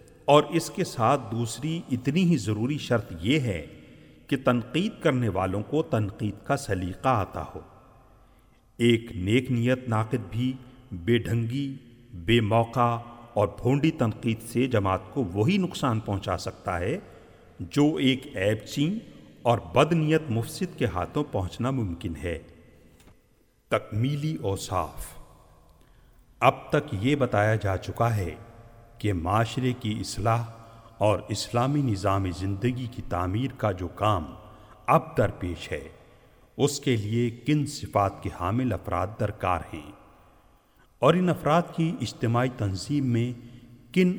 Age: 50-69